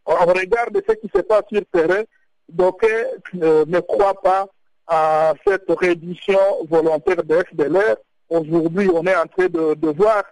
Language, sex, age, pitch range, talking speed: French, male, 60-79, 165-260 Hz, 155 wpm